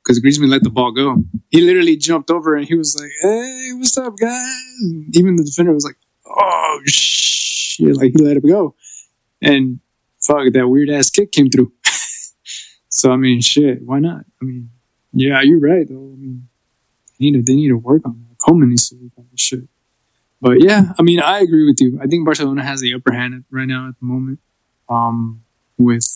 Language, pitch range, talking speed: English, 120-140 Hz, 205 wpm